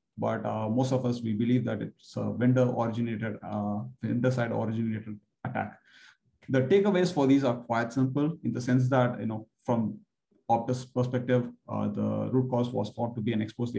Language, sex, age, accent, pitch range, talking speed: English, male, 30-49, Indian, 115-130 Hz, 185 wpm